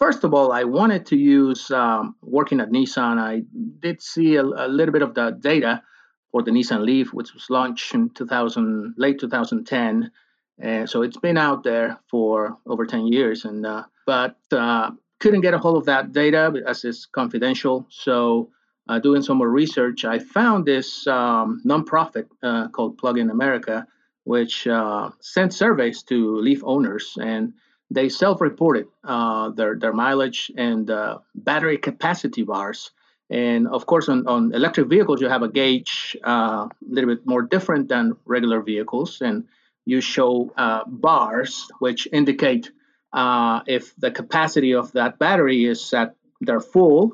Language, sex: English, male